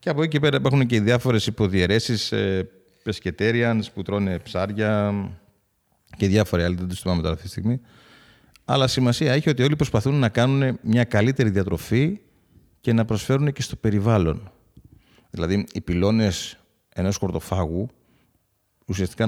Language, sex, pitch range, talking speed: Greek, male, 95-120 Hz, 140 wpm